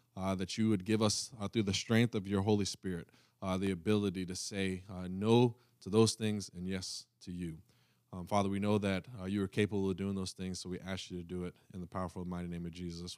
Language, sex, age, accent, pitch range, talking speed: English, male, 20-39, American, 95-125 Hz, 250 wpm